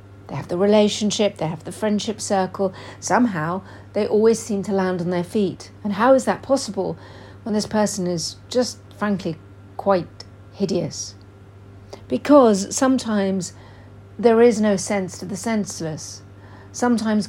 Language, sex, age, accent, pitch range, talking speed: English, female, 50-69, British, 170-210 Hz, 140 wpm